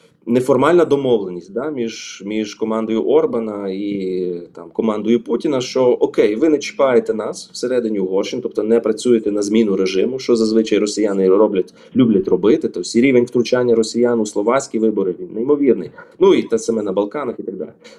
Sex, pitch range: male, 115-170 Hz